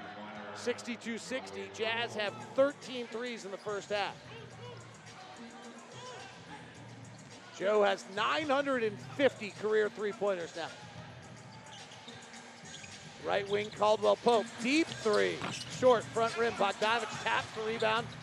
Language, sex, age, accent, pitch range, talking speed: English, male, 40-59, American, 195-235 Hz, 90 wpm